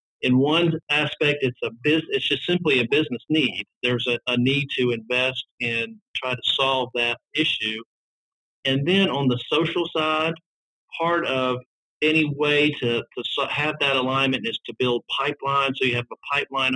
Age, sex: 50-69, male